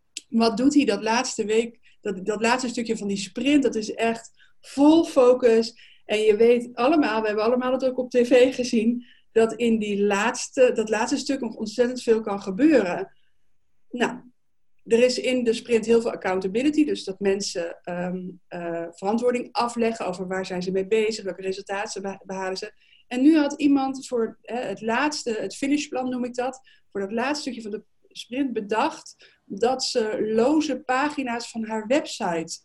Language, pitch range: Dutch, 210-275 Hz